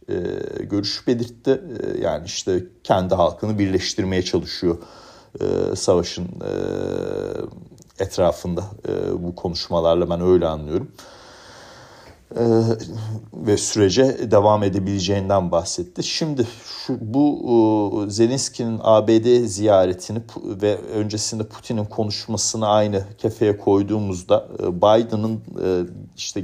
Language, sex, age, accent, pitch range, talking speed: Turkish, male, 40-59, native, 95-115 Hz, 80 wpm